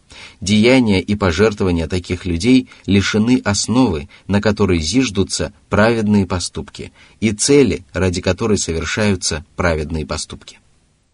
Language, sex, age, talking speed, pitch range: Russian, male, 30-49, 100 wpm, 85-110 Hz